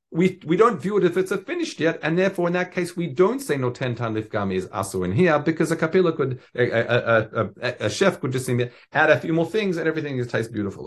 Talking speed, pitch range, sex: 265 wpm, 115-160 Hz, male